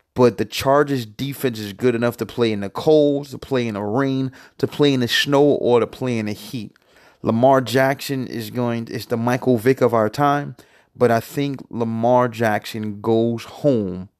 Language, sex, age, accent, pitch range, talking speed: English, male, 30-49, American, 110-130 Hz, 195 wpm